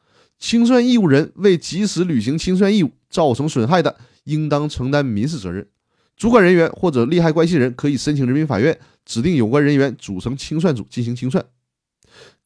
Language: Chinese